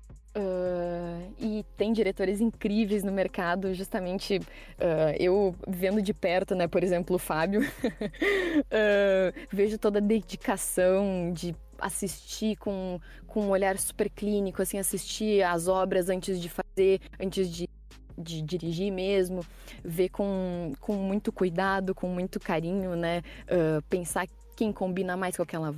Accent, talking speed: Brazilian, 125 wpm